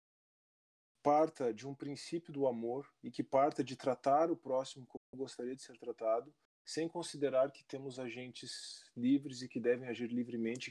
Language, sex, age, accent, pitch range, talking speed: Portuguese, male, 20-39, Brazilian, 115-140 Hz, 165 wpm